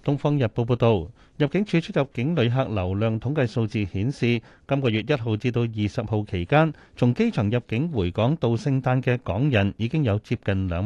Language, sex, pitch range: Chinese, male, 105-140 Hz